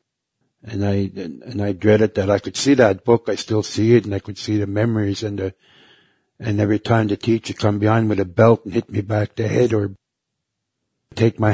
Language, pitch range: English, 105-115 Hz